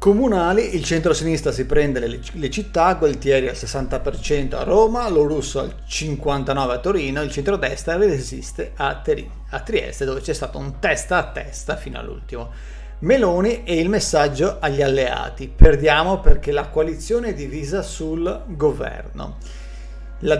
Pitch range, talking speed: 135-175 Hz, 145 wpm